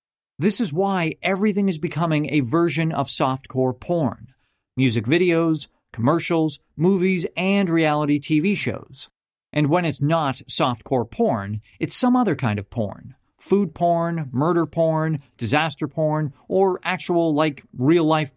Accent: American